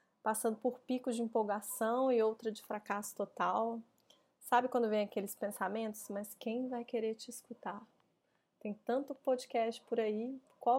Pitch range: 215-250 Hz